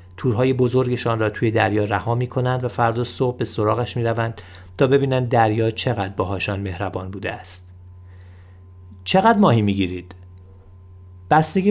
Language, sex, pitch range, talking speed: Persian, male, 95-120 Hz, 140 wpm